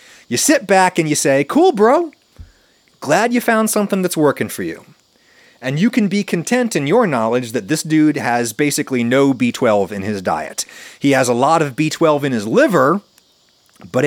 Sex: male